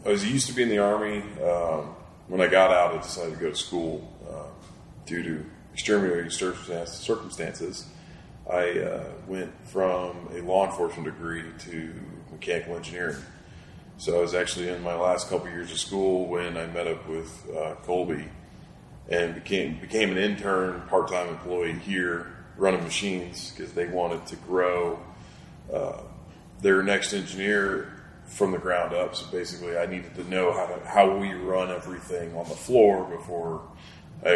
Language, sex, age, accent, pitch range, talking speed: English, male, 30-49, American, 85-95 Hz, 160 wpm